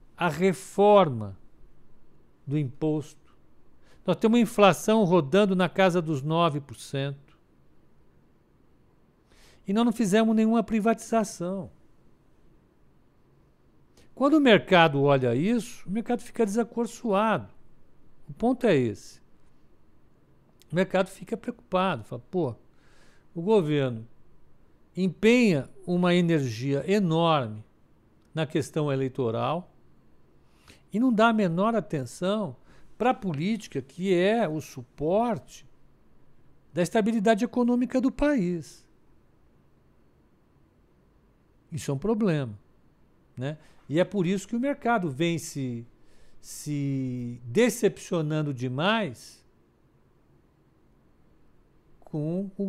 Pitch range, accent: 140-210 Hz, Brazilian